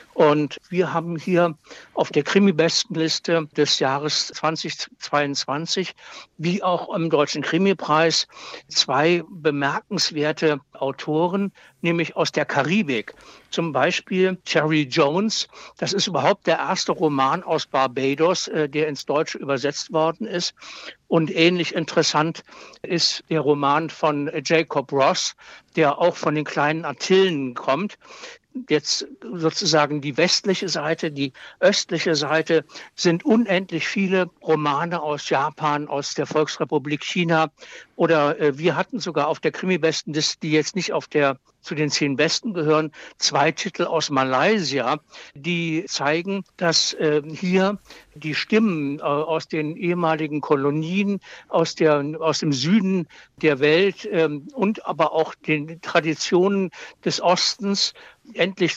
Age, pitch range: 60-79, 150-180 Hz